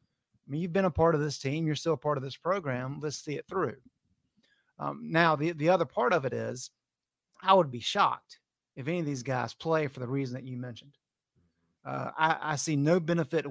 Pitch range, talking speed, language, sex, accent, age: 130-160 Hz, 225 wpm, English, male, American, 30-49